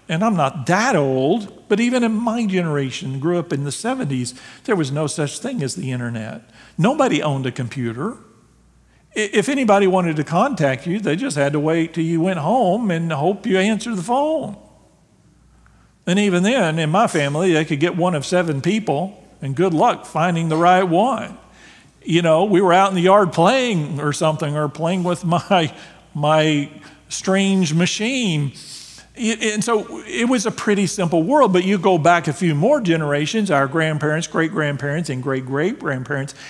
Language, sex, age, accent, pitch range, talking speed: English, male, 50-69, American, 140-190 Hz, 175 wpm